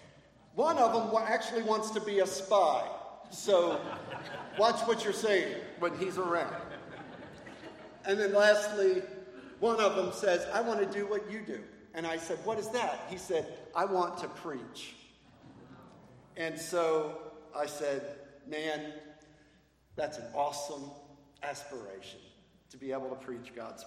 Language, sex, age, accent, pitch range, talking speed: English, male, 50-69, American, 155-210 Hz, 145 wpm